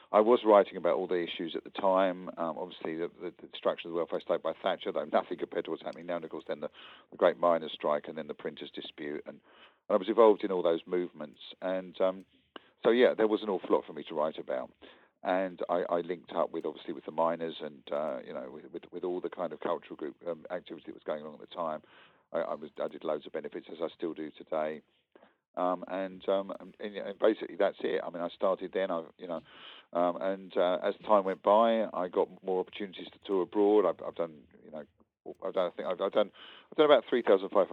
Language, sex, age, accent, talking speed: English, male, 50-69, British, 250 wpm